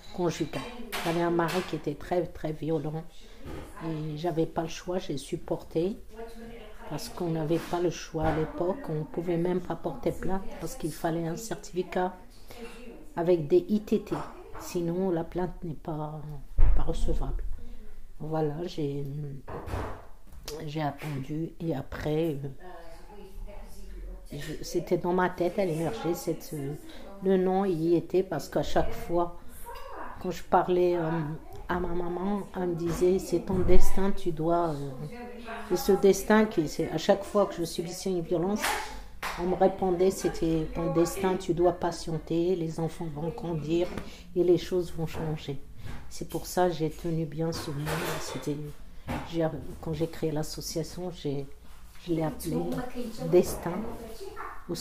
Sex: female